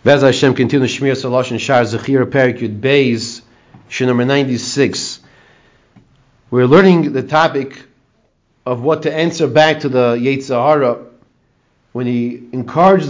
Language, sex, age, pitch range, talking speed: English, male, 40-59, 125-160 Hz, 75 wpm